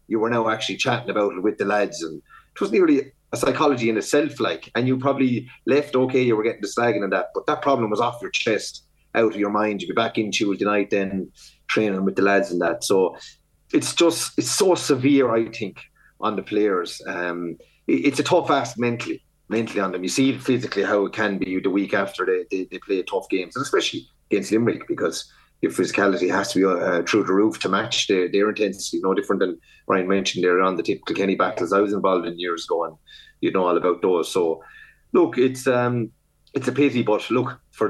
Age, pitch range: 30-49, 95-130 Hz